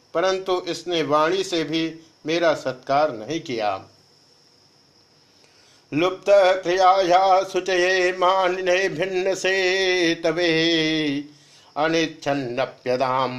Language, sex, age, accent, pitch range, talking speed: Hindi, male, 50-69, native, 145-180 Hz, 75 wpm